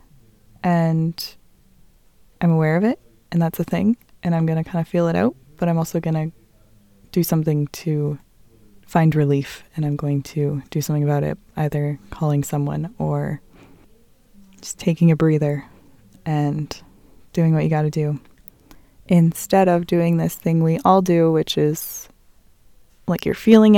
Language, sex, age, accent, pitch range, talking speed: English, female, 20-39, American, 155-180 Hz, 160 wpm